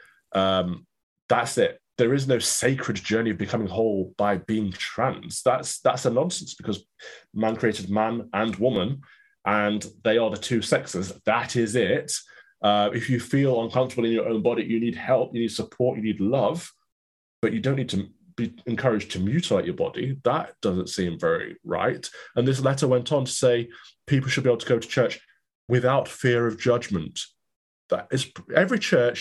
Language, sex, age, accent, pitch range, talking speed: English, male, 20-39, British, 105-130 Hz, 185 wpm